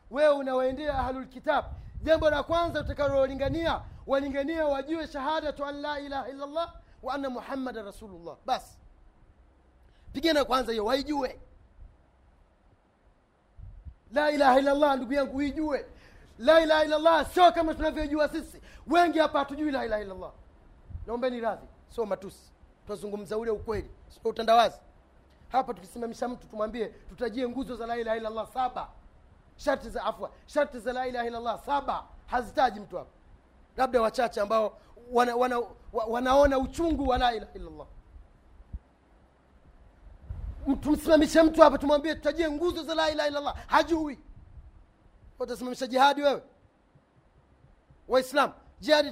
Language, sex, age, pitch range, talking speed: Swahili, male, 30-49, 215-300 Hz, 135 wpm